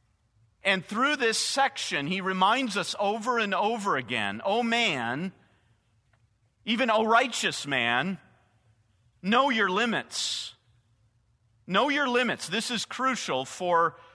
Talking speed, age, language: 115 wpm, 40-59, English